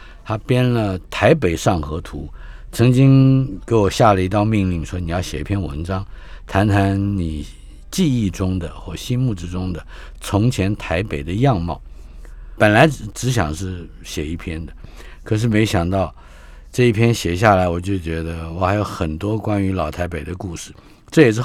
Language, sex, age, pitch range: Chinese, male, 50-69, 85-115 Hz